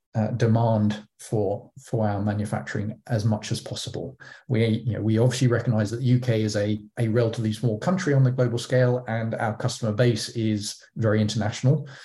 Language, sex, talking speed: English, male, 180 wpm